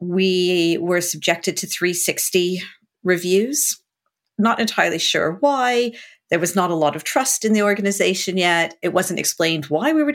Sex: female